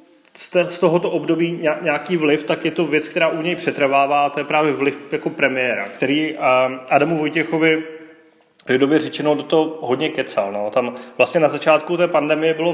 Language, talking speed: Czech, 175 wpm